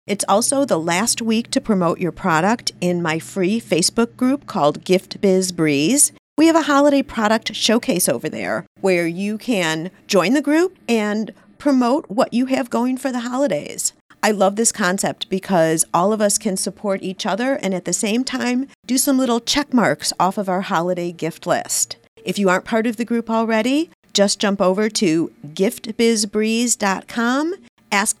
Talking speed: 175 wpm